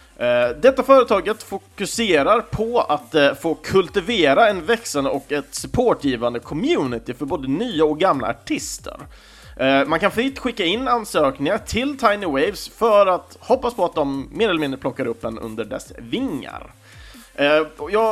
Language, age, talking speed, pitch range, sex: Swedish, 30-49, 155 wpm, 130-200 Hz, male